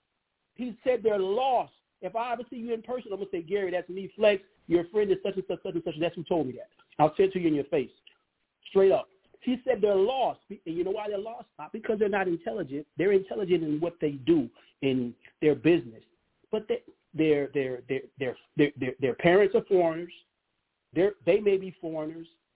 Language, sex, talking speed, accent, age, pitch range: English, male, 225 wpm, American, 40-59, 175-235 Hz